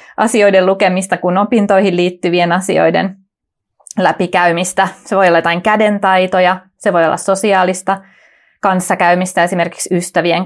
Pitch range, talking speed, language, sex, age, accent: 180-230 Hz, 110 wpm, Finnish, female, 30-49, native